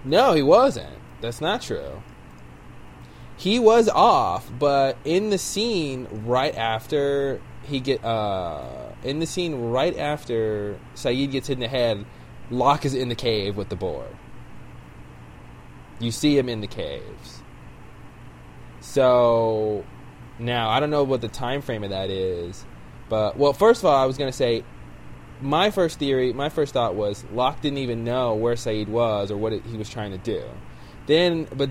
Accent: American